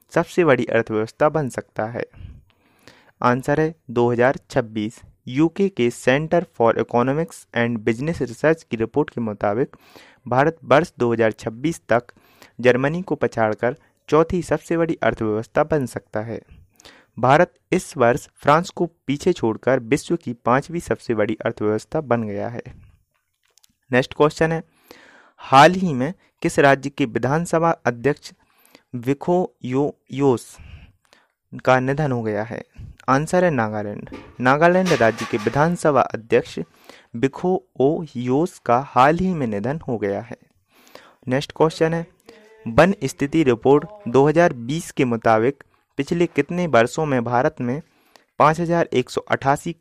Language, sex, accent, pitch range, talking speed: Hindi, male, native, 120-160 Hz, 125 wpm